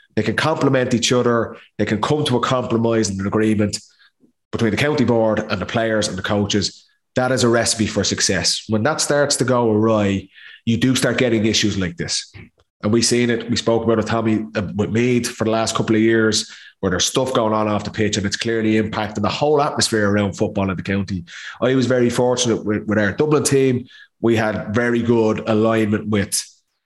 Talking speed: 210 wpm